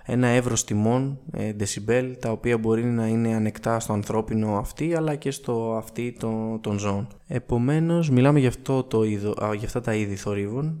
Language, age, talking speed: Greek, 20-39, 155 wpm